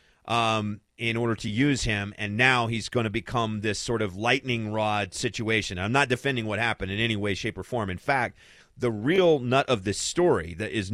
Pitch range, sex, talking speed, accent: 110-140 Hz, male, 215 wpm, American